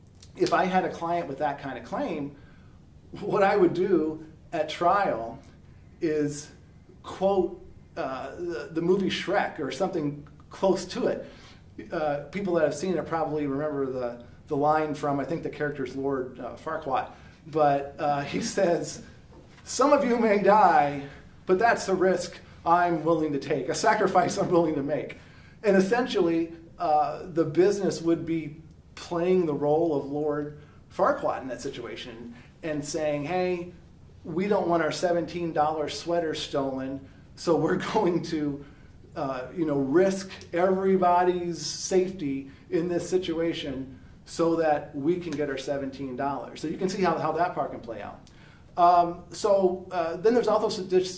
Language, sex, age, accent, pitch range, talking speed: English, male, 40-59, American, 145-185 Hz, 155 wpm